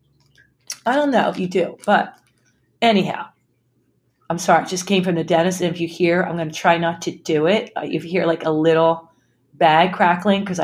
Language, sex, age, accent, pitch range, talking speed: English, female, 40-59, American, 180-270 Hz, 205 wpm